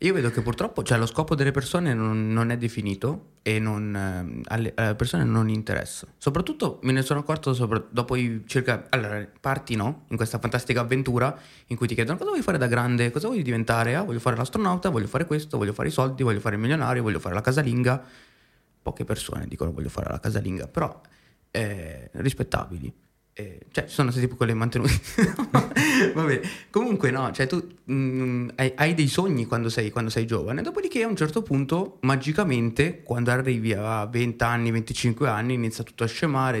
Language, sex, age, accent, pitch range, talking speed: Italian, male, 20-39, native, 110-145 Hz, 190 wpm